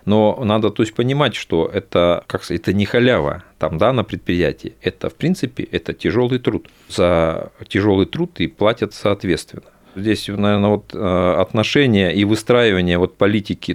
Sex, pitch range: male, 85-110 Hz